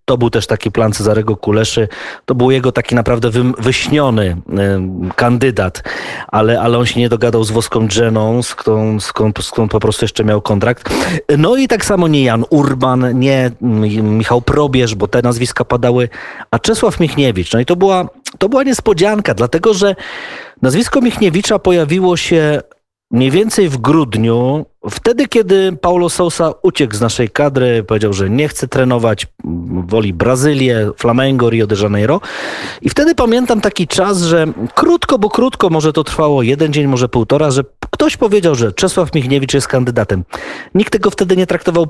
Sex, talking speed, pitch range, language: male, 160 wpm, 115-180 Hz, Polish